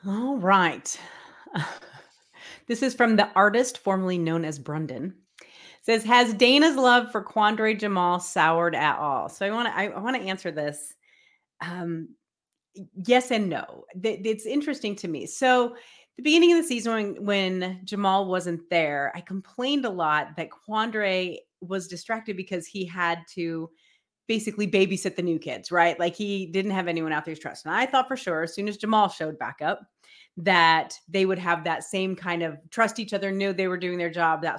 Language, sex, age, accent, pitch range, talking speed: English, female, 30-49, American, 170-240 Hz, 175 wpm